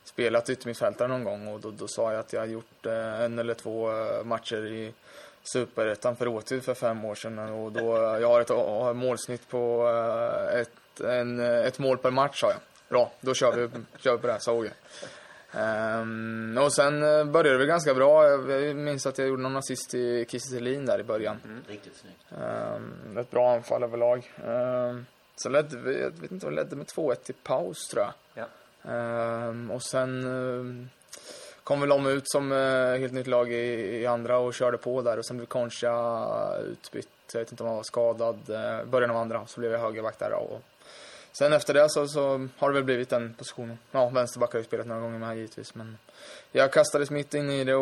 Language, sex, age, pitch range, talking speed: Swedish, male, 20-39, 115-130 Hz, 205 wpm